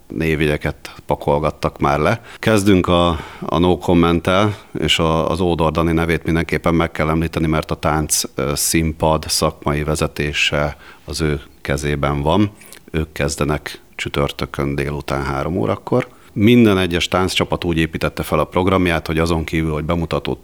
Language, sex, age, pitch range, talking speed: Hungarian, male, 40-59, 75-85 Hz, 140 wpm